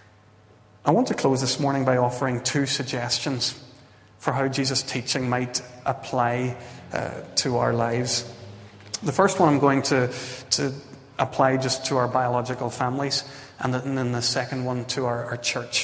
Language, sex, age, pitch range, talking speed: English, male, 30-49, 105-140 Hz, 160 wpm